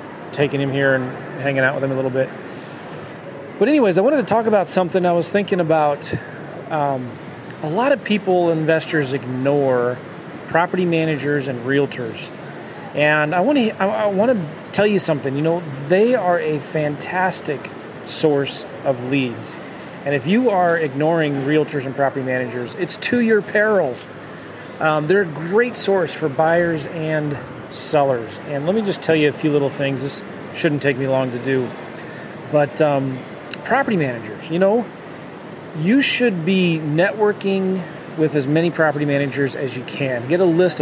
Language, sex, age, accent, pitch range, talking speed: English, male, 30-49, American, 140-185 Hz, 165 wpm